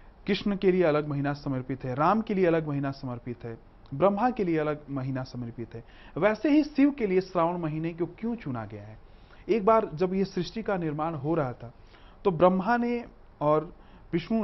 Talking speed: 200 wpm